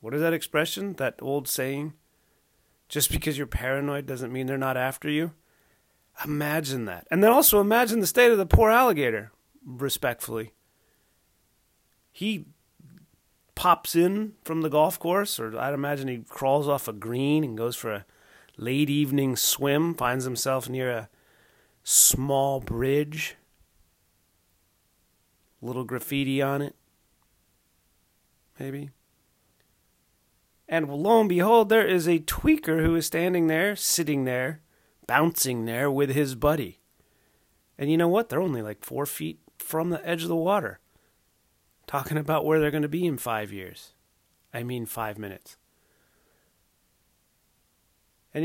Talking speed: 140 wpm